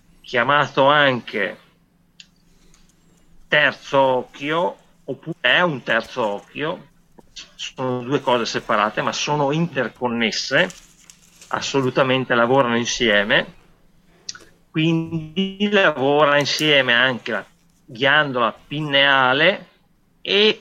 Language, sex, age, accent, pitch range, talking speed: Italian, male, 40-59, native, 115-140 Hz, 80 wpm